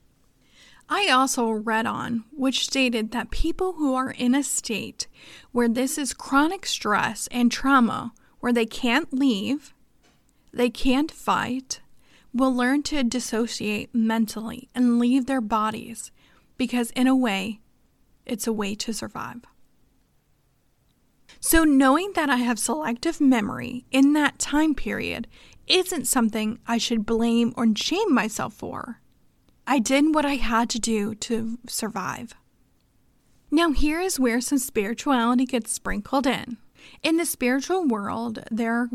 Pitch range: 230-270 Hz